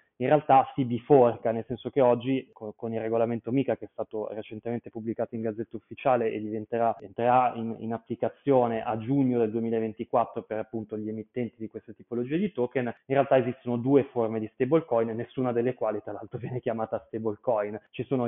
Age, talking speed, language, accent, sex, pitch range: 20-39, 185 wpm, Italian, native, male, 115-130 Hz